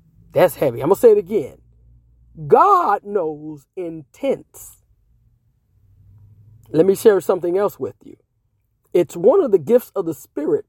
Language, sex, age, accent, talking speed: English, male, 40-59, American, 140 wpm